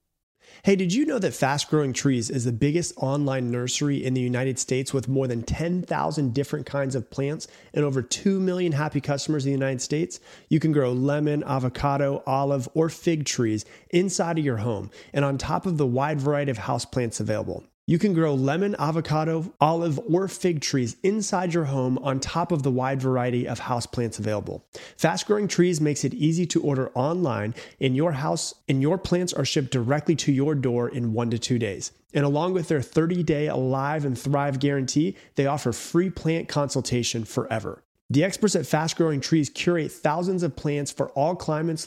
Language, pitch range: English, 130-165 Hz